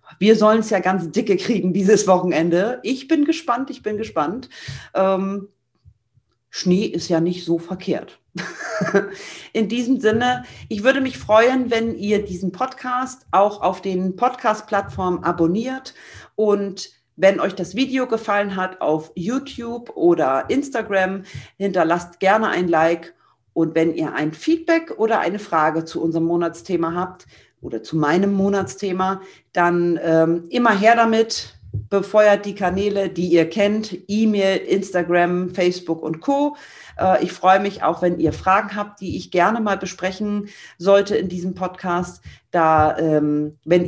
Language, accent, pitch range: German, German, 165-210 Hz